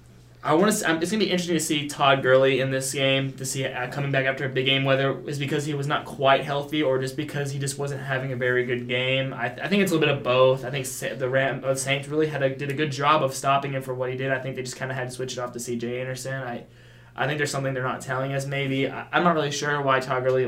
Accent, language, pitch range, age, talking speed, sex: American, English, 120-135 Hz, 20-39, 310 wpm, male